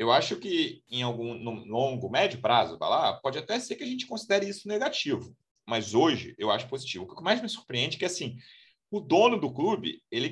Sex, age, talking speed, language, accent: male, 30-49, 215 wpm, Portuguese, Brazilian